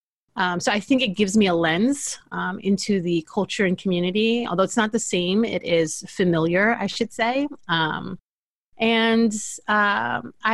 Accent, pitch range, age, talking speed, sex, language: American, 175-220 Hz, 30-49, 165 wpm, female, English